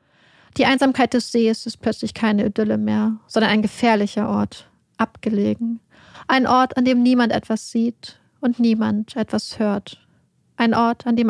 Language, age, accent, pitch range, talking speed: German, 30-49, German, 205-235 Hz, 155 wpm